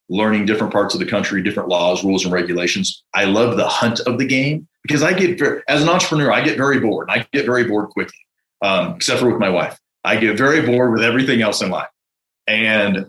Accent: American